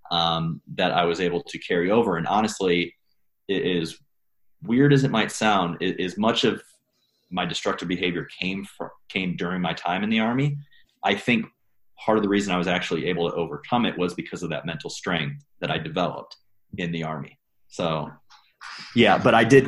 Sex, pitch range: male, 85-110 Hz